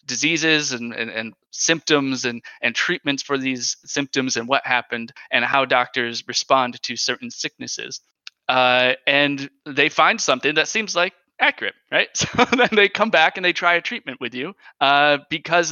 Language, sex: English, male